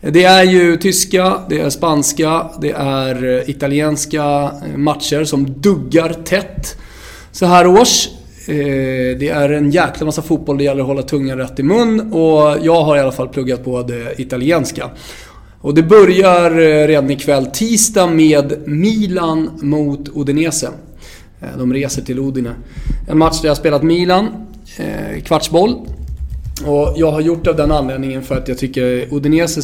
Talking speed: 150 wpm